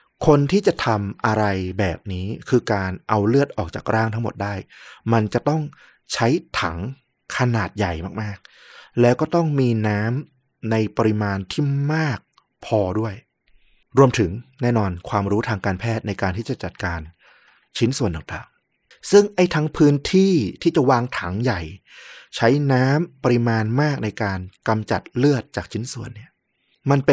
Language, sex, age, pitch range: Thai, male, 20-39, 105-135 Hz